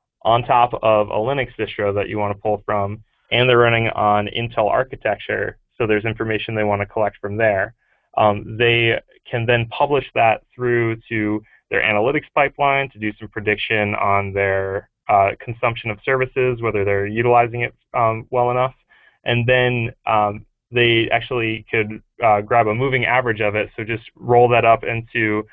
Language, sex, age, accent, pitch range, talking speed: English, male, 20-39, American, 105-120 Hz, 175 wpm